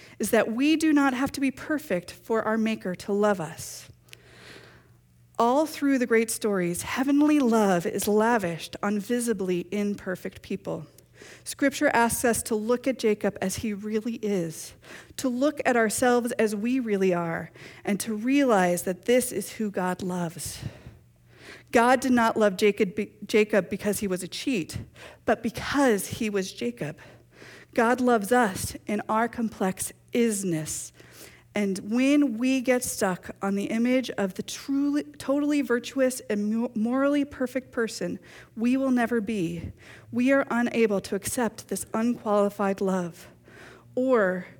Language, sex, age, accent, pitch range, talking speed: English, female, 40-59, American, 190-245 Hz, 145 wpm